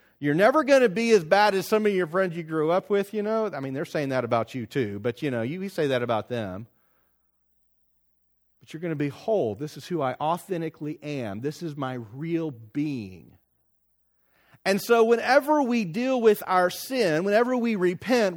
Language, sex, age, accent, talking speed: English, male, 40-59, American, 205 wpm